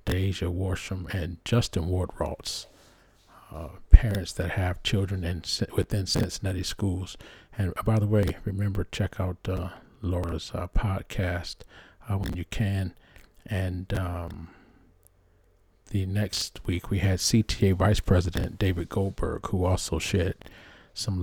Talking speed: 125 wpm